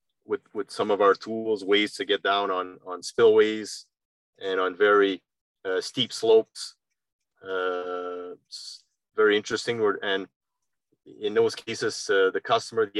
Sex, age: male, 30-49